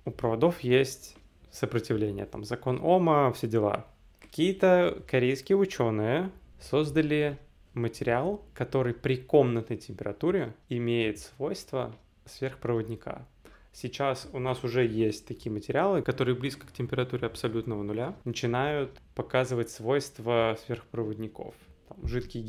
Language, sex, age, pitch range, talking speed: Russian, male, 20-39, 115-130 Hz, 105 wpm